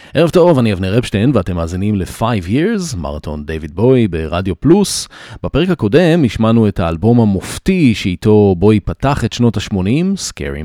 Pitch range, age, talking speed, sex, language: 85-120 Hz, 30-49, 150 wpm, male, Hebrew